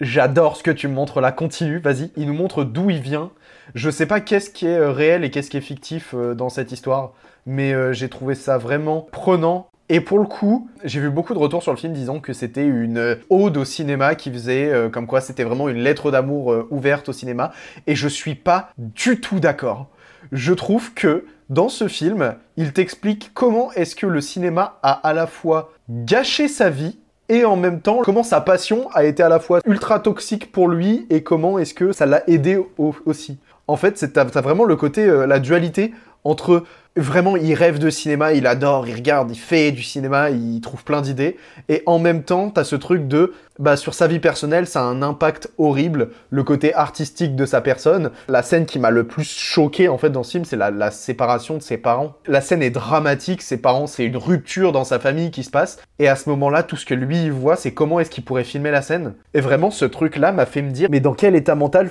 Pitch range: 135-175 Hz